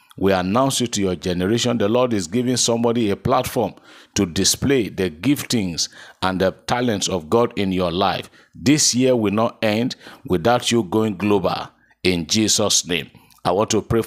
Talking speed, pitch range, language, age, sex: 175 wpm, 100-125 Hz, English, 50-69, male